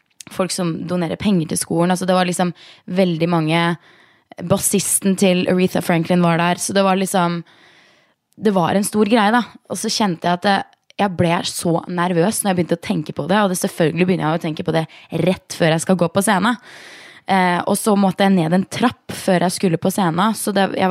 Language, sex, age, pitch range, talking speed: English, female, 20-39, 160-190 Hz, 210 wpm